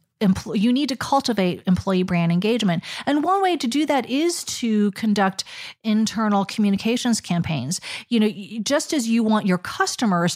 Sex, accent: female, American